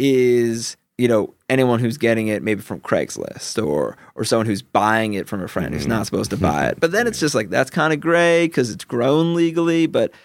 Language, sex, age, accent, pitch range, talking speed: English, male, 30-49, American, 115-155 Hz, 230 wpm